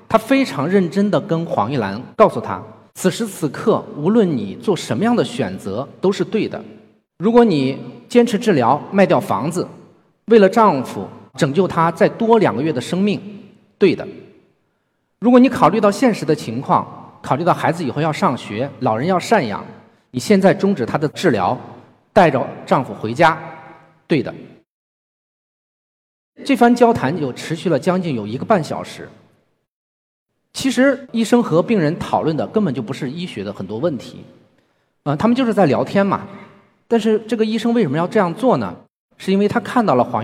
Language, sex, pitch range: Chinese, male, 150-225 Hz